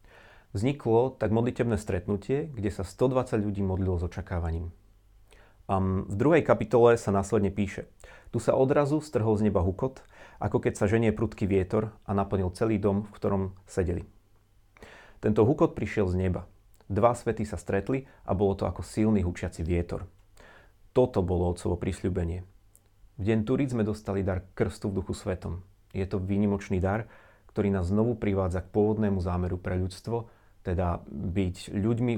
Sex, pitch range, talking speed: male, 95-110 Hz, 155 wpm